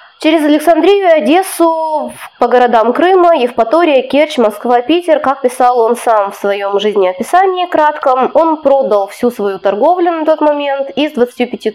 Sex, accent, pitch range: female, native, 200-285 Hz